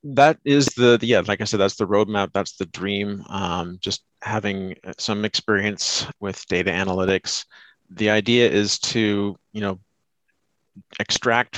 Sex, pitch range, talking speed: male, 95-110 Hz, 150 wpm